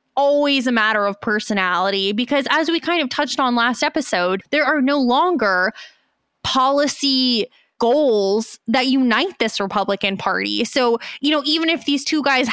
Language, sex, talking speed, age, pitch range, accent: English, female, 160 wpm, 20-39, 205-265 Hz, American